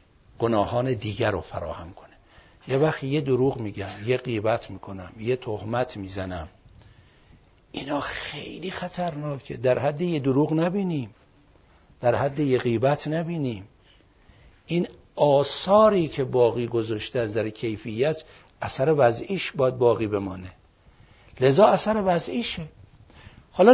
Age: 60-79